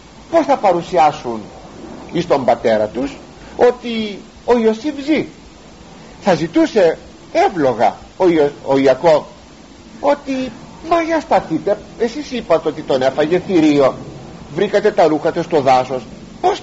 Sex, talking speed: male, 125 wpm